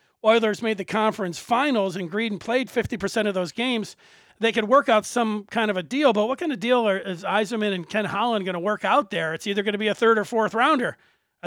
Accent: American